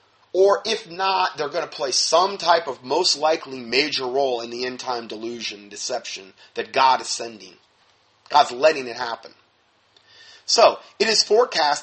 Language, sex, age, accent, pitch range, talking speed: English, male, 30-49, American, 140-225 Hz, 160 wpm